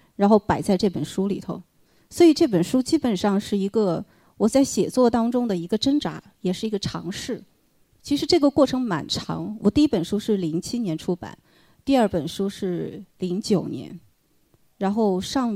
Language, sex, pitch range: Chinese, female, 195-265 Hz